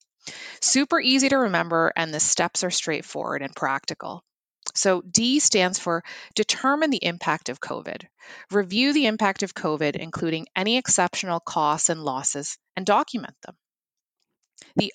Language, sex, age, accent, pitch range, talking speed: English, female, 30-49, American, 160-210 Hz, 140 wpm